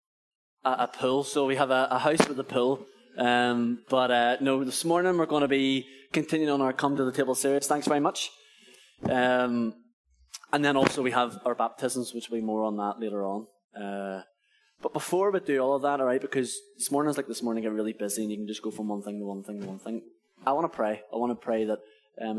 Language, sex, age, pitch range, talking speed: English, male, 10-29, 110-135 Hz, 245 wpm